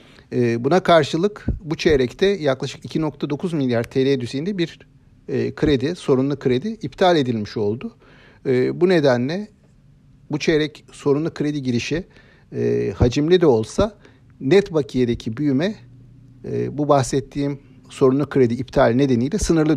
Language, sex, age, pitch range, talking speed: Turkish, male, 50-69, 125-155 Hz, 110 wpm